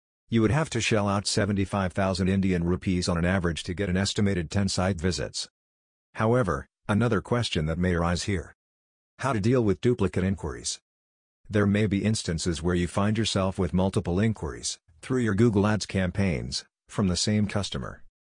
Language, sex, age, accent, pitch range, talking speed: English, male, 50-69, American, 85-105 Hz, 170 wpm